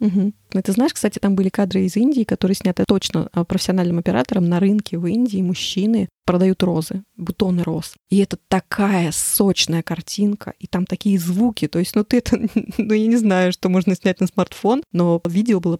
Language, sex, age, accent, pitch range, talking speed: Russian, female, 20-39, native, 180-220 Hz, 190 wpm